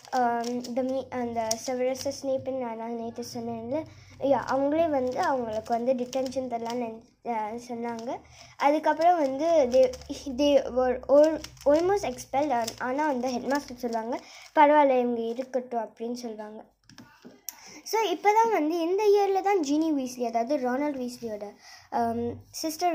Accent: native